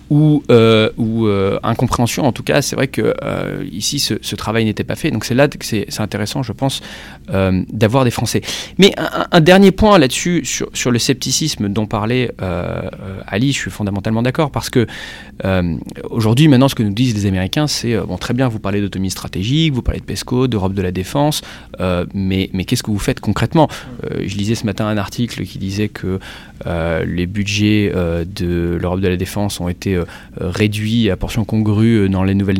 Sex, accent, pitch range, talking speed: male, French, 100-125 Hz, 205 wpm